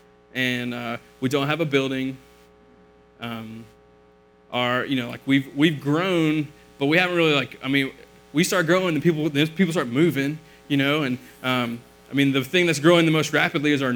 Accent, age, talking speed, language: American, 20-39, 195 wpm, English